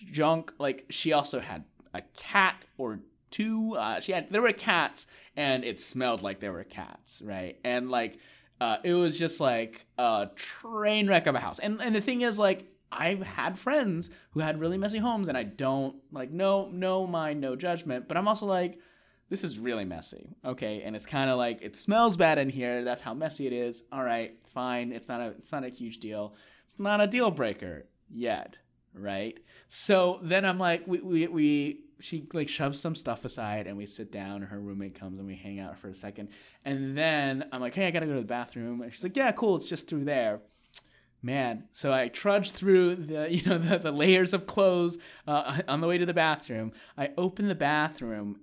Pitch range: 120-185 Hz